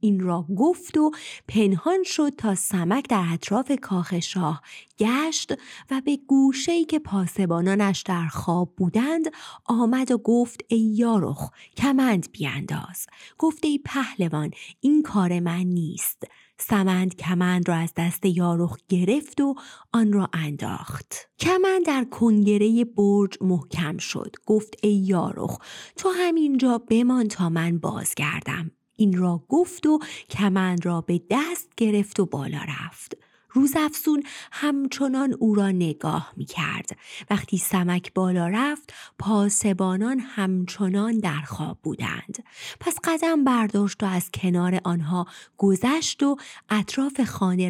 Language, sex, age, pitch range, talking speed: Persian, female, 30-49, 180-270 Hz, 125 wpm